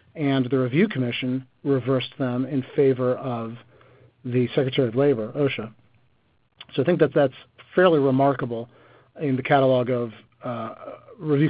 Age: 40-59